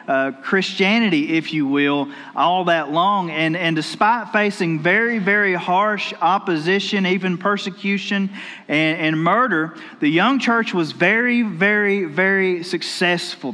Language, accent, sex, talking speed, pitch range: English, American, male, 130 wpm, 175-215 Hz